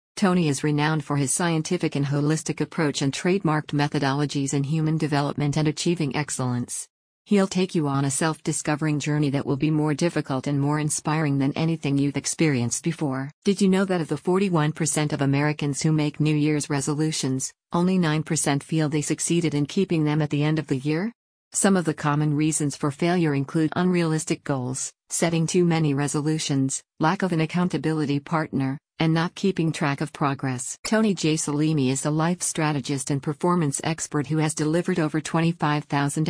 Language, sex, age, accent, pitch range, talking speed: English, female, 50-69, American, 145-165 Hz, 175 wpm